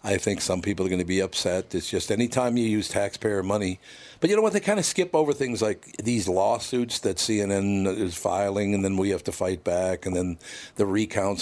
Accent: American